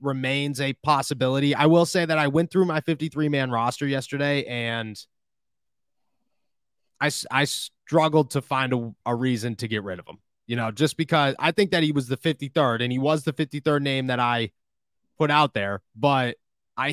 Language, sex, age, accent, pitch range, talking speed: English, male, 20-39, American, 115-140 Hz, 190 wpm